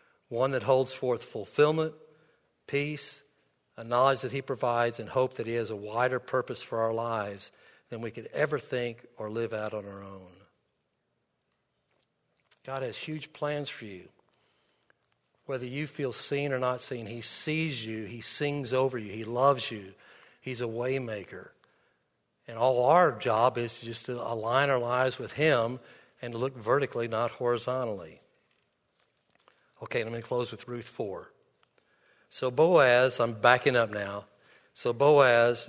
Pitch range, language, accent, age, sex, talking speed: 115-135 Hz, English, American, 60-79, male, 155 wpm